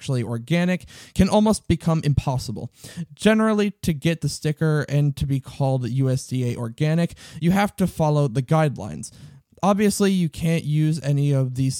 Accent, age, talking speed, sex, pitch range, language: American, 20-39, 145 wpm, male, 135-175 Hz, English